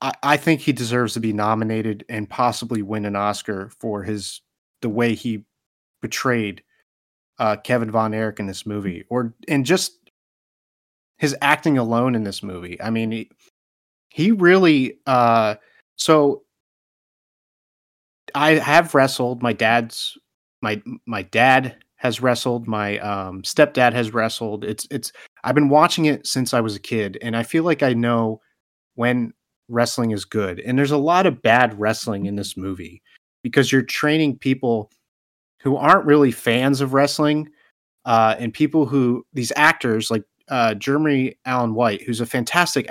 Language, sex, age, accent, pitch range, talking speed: English, male, 30-49, American, 110-145 Hz, 155 wpm